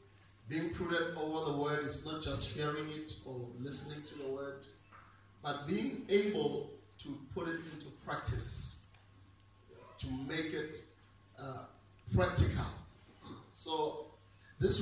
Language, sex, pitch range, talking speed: English, male, 105-150 Hz, 120 wpm